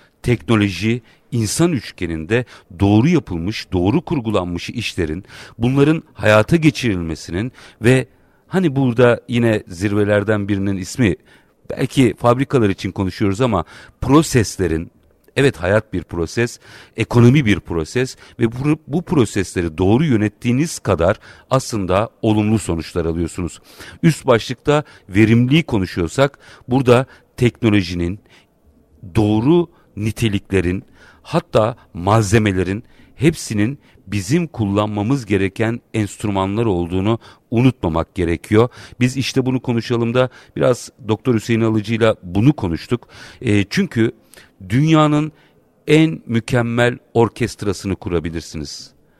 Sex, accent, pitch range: male, native, 95-125 Hz